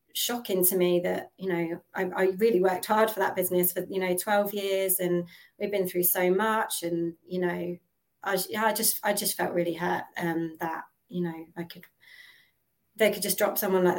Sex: female